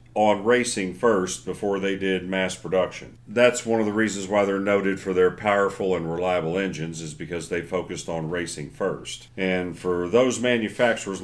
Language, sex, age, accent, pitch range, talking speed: English, male, 40-59, American, 90-110 Hz, 180 wpm